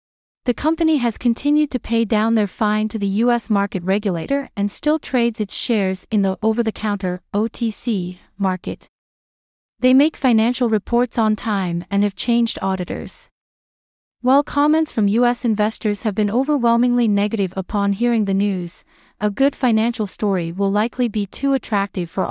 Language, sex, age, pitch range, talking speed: English, female, 30-49, 200-245 Hz, 155 wpm